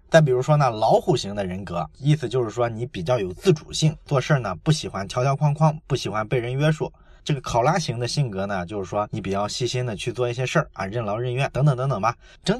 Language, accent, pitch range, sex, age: Chinese, native, 120-165 Hz, male, 20-39